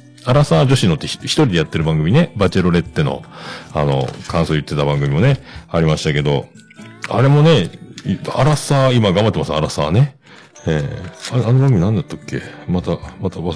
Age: 40-59